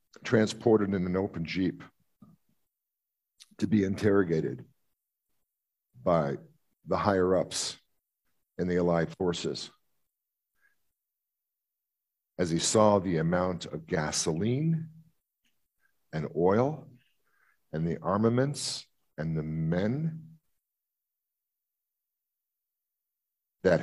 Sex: male